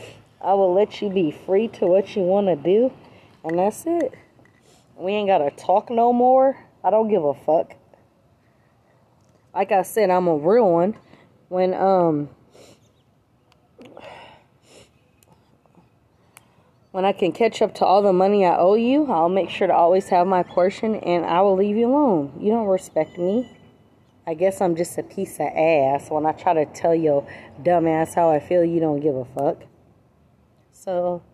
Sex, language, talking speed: female, English, 175 wpm